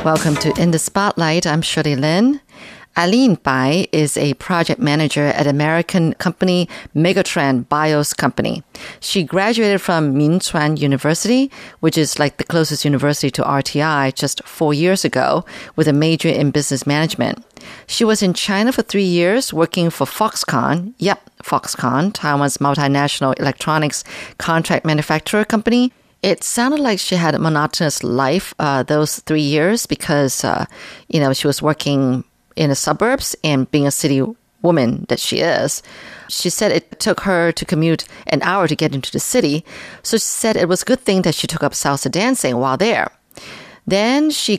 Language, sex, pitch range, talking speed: English, female, 145-195 Hz, 165 wpm